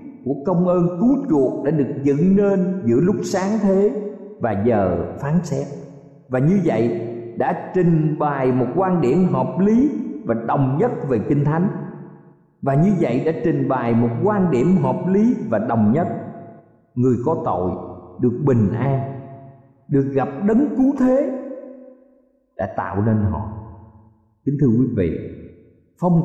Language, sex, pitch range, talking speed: Vietnamese, male, 125-195 Hz, 155 wpm